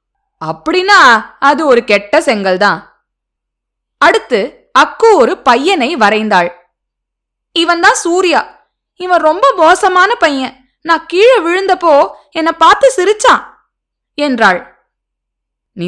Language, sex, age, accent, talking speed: Tamil, female, 20-39, native, 55 wpm